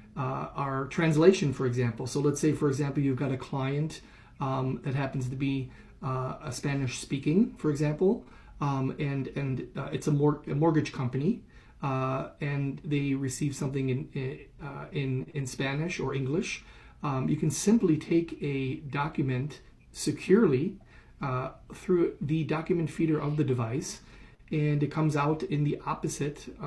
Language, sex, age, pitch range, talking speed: English, male, 30-49, 130-150 Hz, 160 wpm